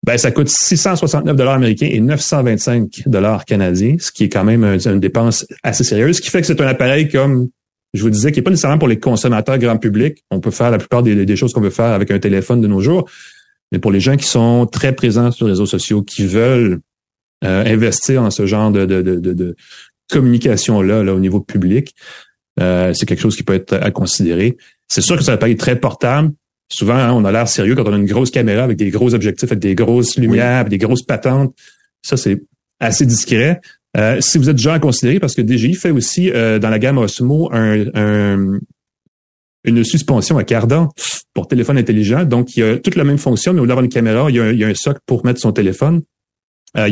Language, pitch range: French, 105-135 Hz